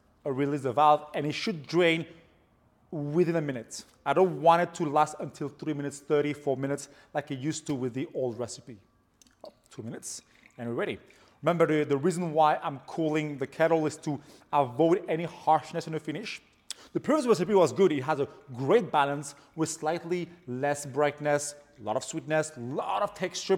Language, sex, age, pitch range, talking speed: English, male, 30-49, 135-165 Hz, 195 wpm